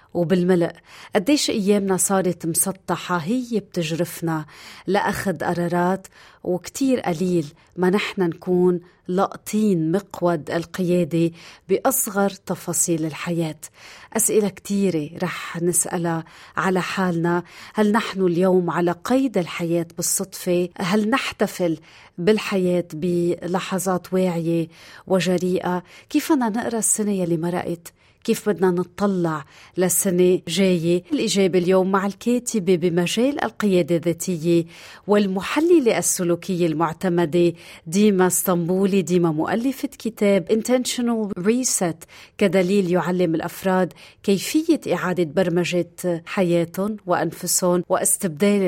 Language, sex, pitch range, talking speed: Arabic, female, 175-200 Hz, 90 wpm